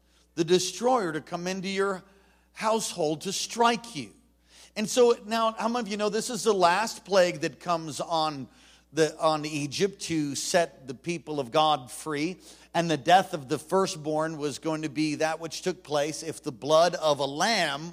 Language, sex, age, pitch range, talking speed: English, male, 50-69, 150-210 Hz, 185 wpm